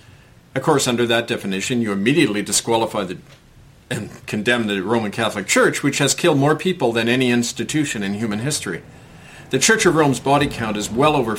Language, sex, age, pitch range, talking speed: English, male, 50-69, 115-155 Hz, 180 wpm